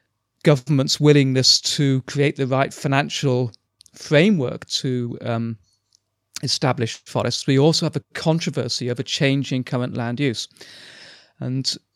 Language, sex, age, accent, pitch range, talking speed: English, male, 30-49, British, 125-145 Hz, 115 wpm